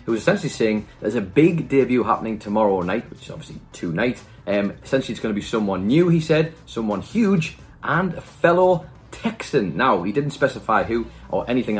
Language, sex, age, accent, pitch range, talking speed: English, male, 30-49, British, 110-160 Hz, 195 wpm